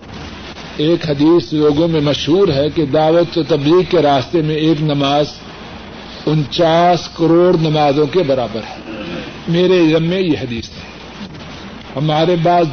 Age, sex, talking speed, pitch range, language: 60-79, male, 130 wpm, 145-170 Hz, Urdu